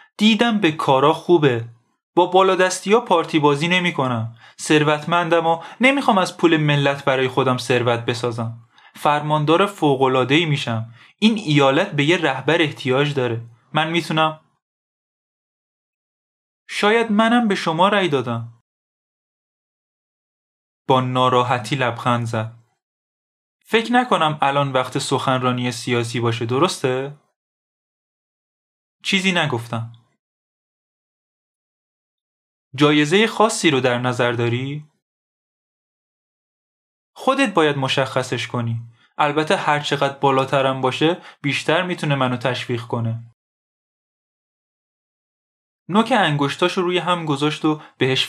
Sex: male